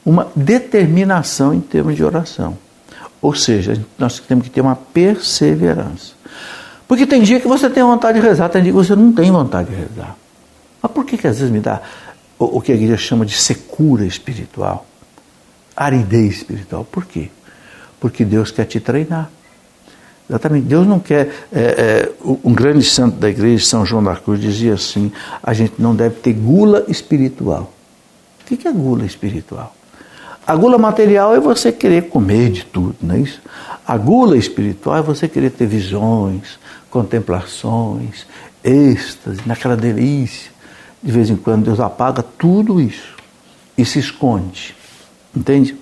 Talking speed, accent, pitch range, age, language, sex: 160 wpm, Brazilian, 110-165 Hz, 60-79, Portuguese, male